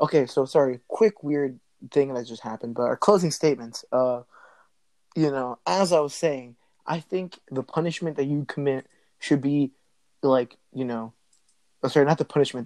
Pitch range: 130-150 Hz